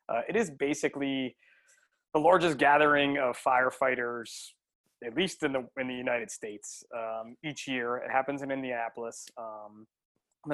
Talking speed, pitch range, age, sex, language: 140 wpm, 120-150 Hz, 20-39, male, English